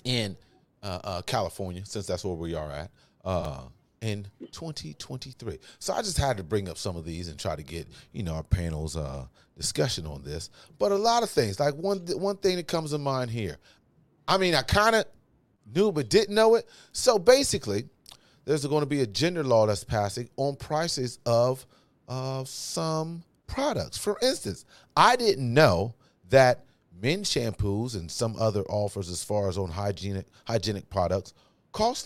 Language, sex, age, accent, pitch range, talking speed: English, male, 30-49, American, 100-150 Hz, 180 wpm